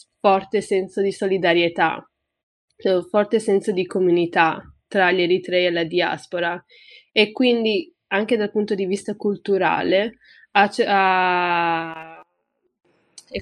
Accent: native